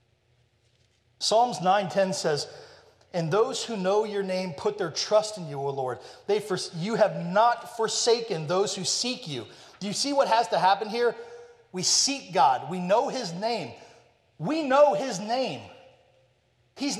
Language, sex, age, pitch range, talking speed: English, male, 30-49, 140-225 Hz, 155 wpm